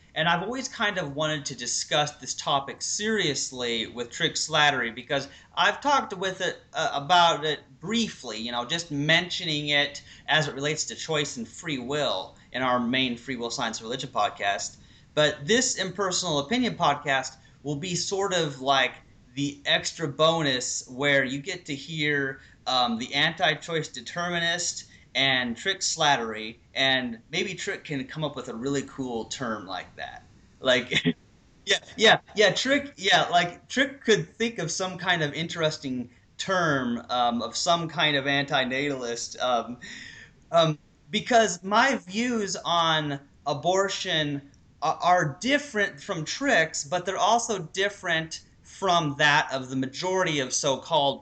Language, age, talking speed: English, 30-49, 150 wpm